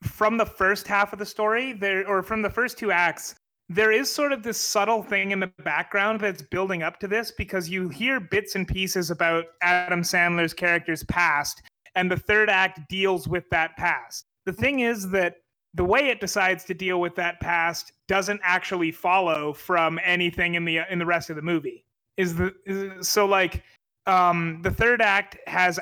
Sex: male